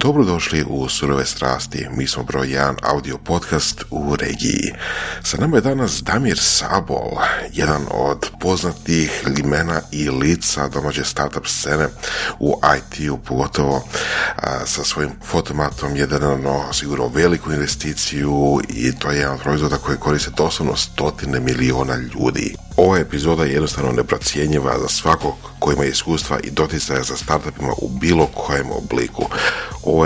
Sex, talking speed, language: male, 140 wpm, Croatian